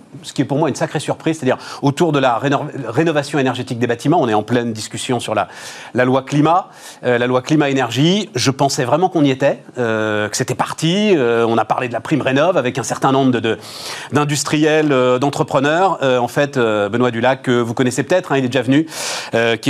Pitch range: 125-155 Hz